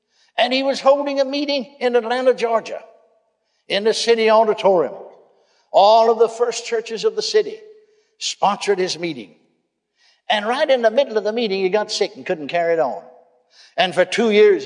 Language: English